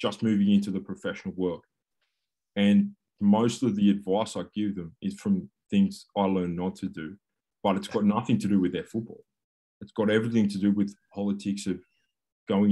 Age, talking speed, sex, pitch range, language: 20-39, 190 wpm, male, 95-105 Hz, English